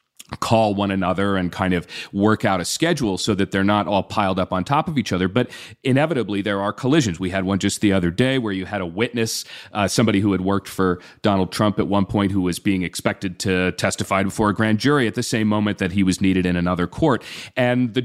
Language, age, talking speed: English, 40-59, 245 wpm